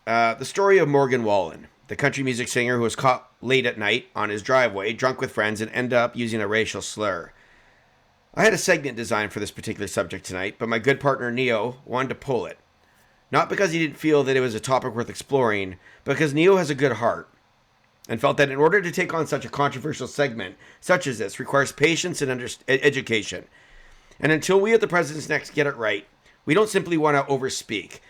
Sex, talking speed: male, 220 wpm